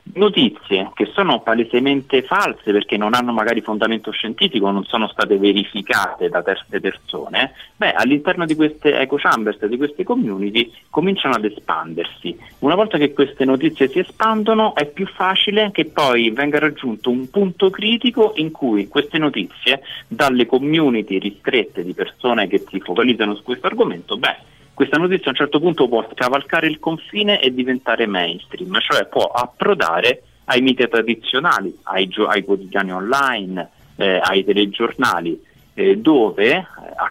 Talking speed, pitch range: 150 wpm, 110-180 Hz